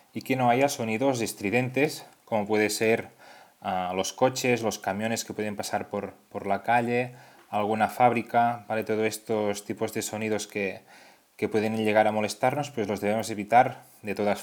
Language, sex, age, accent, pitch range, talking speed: Spanish, male, 20-39, Spanish, 100-120 Hz, 170 wpm